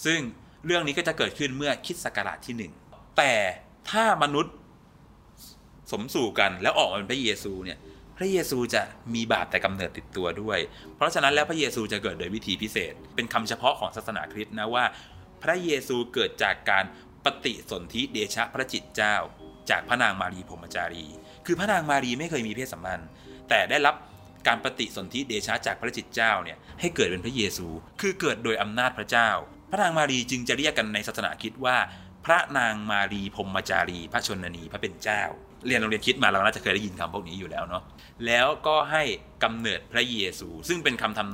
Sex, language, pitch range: male, Thai, 95-135 Hz